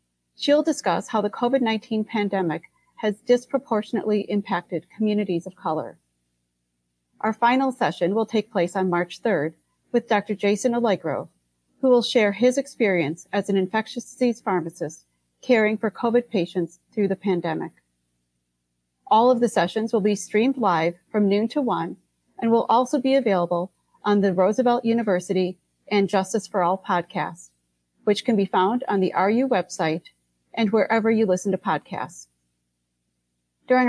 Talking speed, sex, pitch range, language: 145 wpm, female, 175-235 Hz, English